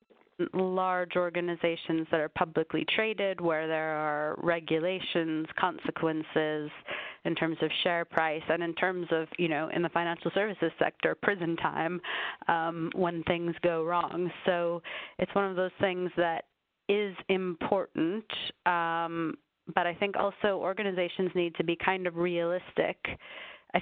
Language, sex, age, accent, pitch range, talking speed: English, female, 30-49, American, 165-185 Hz, 140 wpm